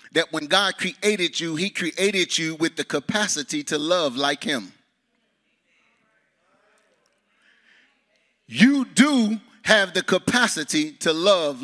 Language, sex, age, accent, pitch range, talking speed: English, male, 30-49, American, 160-225 Hz, 115 wpm